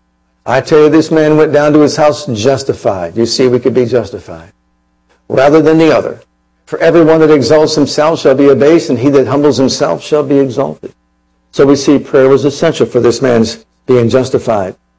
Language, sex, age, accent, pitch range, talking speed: English, male, 60-79, American, 120-155 Hz, 190 wpm